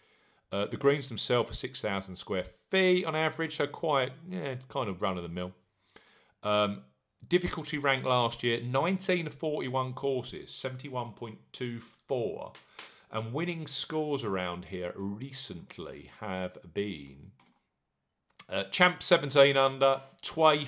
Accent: British